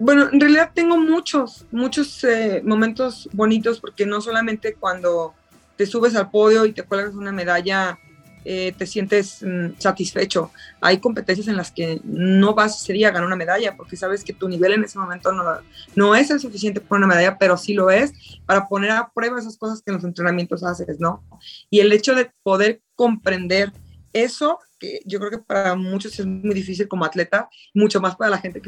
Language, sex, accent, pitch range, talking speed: Spanish, female, Mexican, 180-220 Hz, 195 wpm